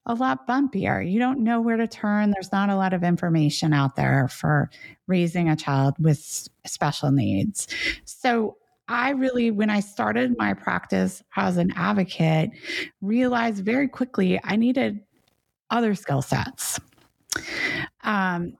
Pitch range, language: 175-235 Hz, English